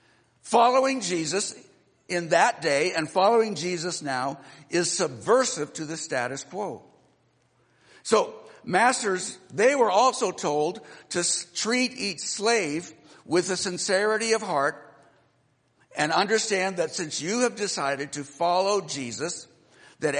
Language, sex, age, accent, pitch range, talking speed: English, male, 60-79, American, 150-205 Hz, 120 wpm